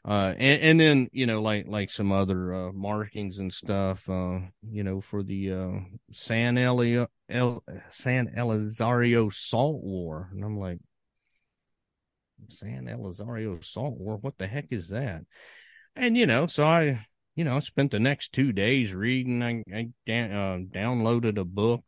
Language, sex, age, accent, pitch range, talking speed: English, male, 40-59, American, 105-135 Hz, 165 wpm